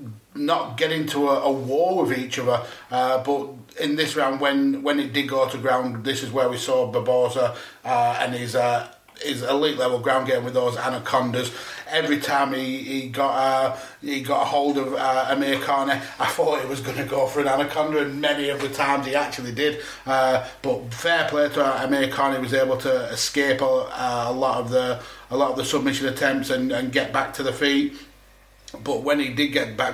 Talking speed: 215 wpm